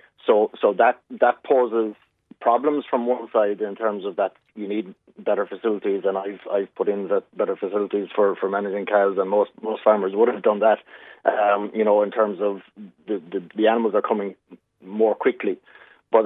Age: 30-49